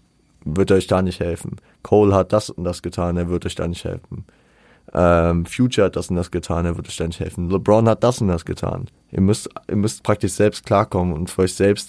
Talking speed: 235 wpm